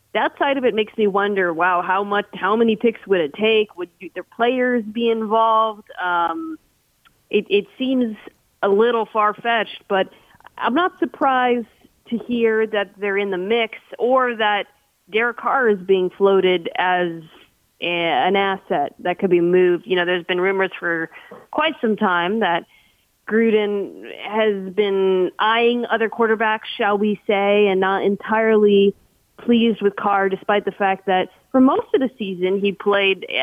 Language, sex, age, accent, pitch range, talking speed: English, female, 30-49, American, 190-235 Hz, 165 wpm